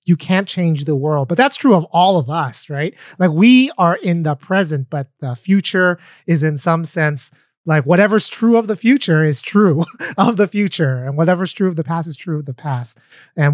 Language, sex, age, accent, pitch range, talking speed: English, male, 30-49, American, 150-190 Hz, 215 wpm